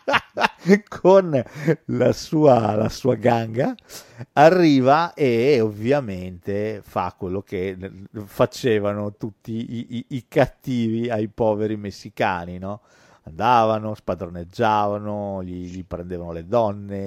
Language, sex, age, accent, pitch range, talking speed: Italian, male, 50-69, native, 95-125 Hz, 95 wpm